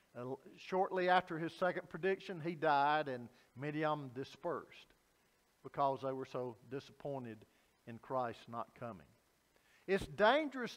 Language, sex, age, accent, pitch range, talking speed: English, male, 50-69, American, 155-215 Hz, 135 wpm